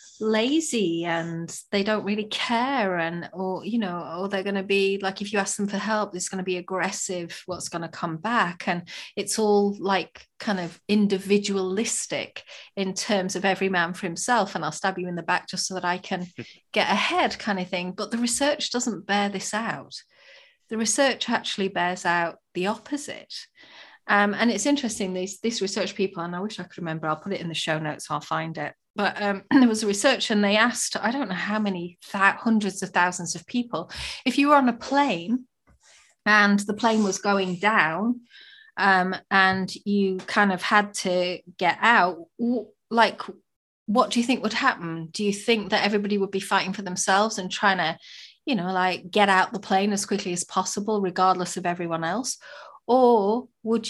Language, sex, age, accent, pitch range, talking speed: English, female, 30-49, British, 185-225 Hz, 200 wpm